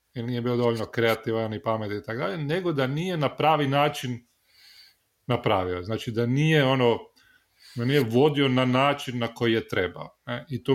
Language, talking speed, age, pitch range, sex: Croatian, 175 wpm, 30-49, 110-140 Hz, male